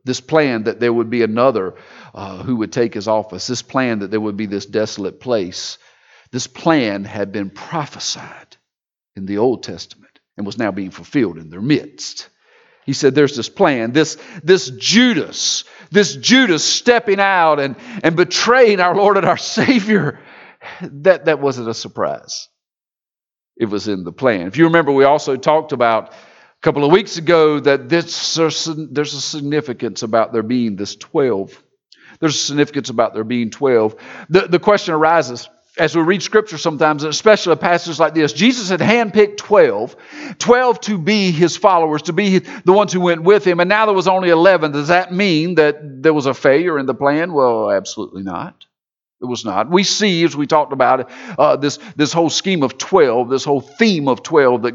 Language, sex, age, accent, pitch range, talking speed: English, male, 50-69, American, 125-175 Hz, 190 wpm